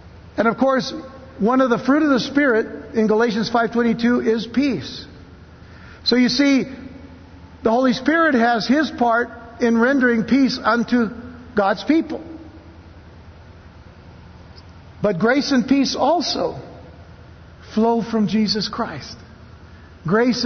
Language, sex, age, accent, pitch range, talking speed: English, male, 60-79, American, 195-255 Hz, 115 wpm